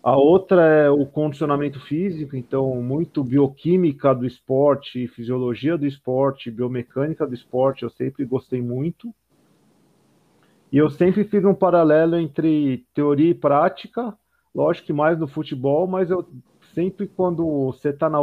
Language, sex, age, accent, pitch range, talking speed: Portuguese, male, 40-59, Brazilian, 130-165 Hz, 140 wpm